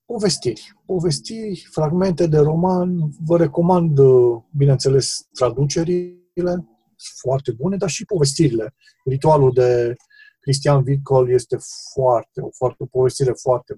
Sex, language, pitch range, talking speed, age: male, Romanian, 120-155 Hz, 110 wpm, 40-59